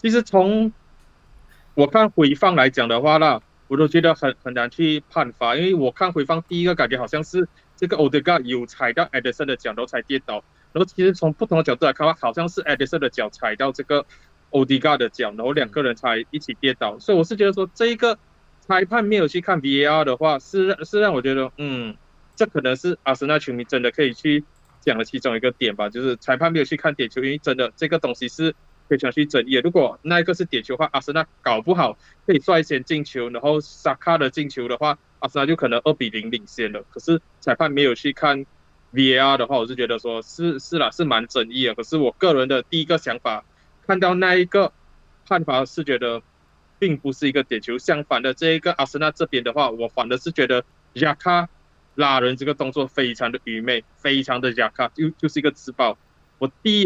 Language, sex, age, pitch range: Chinese, male, 20-39, 130-165 Hz